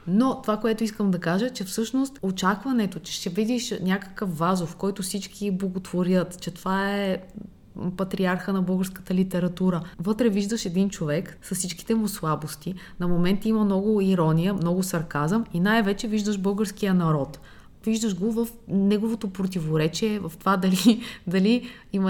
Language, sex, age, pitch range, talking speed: Bulgarian, female, 20-39, 175-215 Hz, 150 wpm